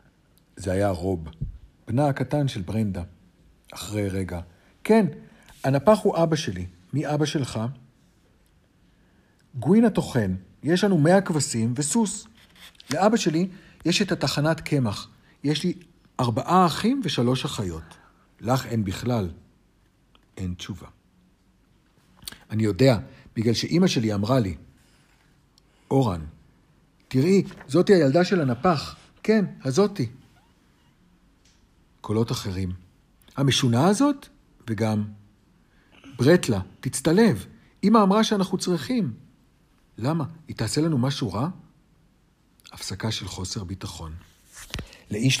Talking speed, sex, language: 105 wpm, male, Hebrew